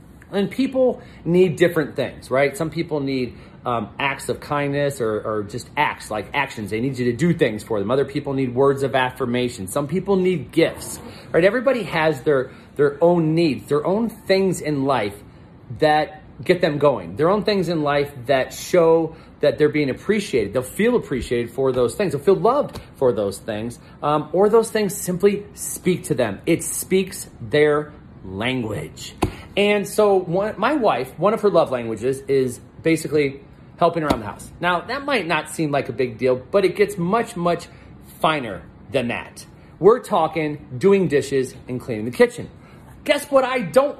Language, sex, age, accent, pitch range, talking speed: English, male, 40-59, American, 135-195 Hz, 180 wpm